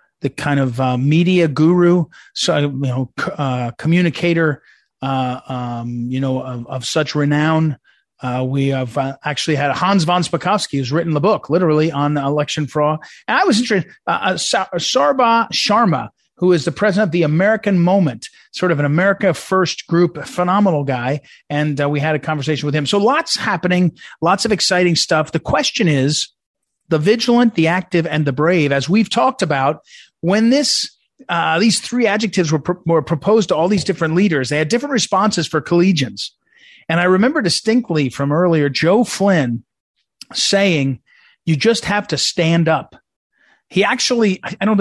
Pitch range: 150-200 Hz